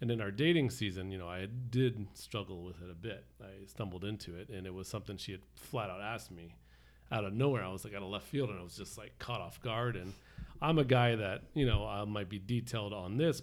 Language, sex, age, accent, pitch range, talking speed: English, male, 40-59, American, 95-120 Hz, 265 wpm